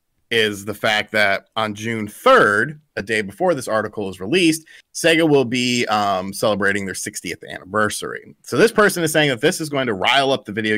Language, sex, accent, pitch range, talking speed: English, male, American, 105-155 Hz, 200 wpm